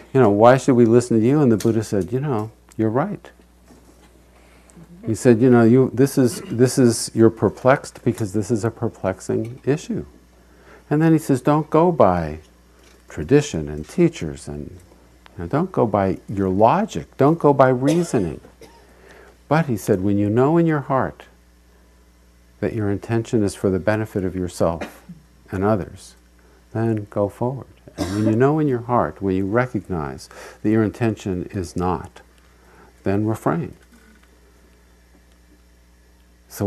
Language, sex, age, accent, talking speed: English, male, 50-69, American, 155 wpm